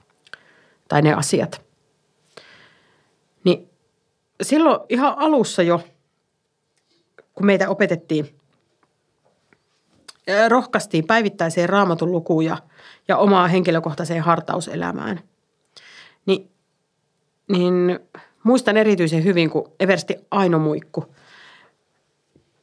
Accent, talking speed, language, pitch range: native, 70 wpm, Finnish, 155-195 Hz